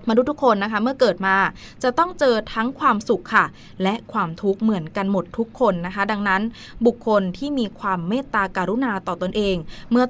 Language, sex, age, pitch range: Thai, female, 20-39, 190-235 Hz